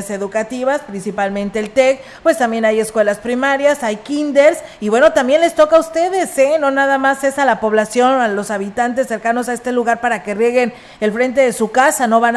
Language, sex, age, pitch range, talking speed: Spanish, female, 40-59, 215-260 Hz, 210 wpm